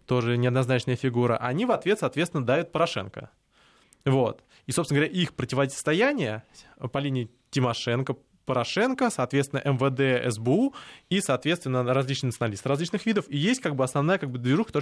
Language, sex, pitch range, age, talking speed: Russian, male, 125-160 Hz, 20-39, 140 wpm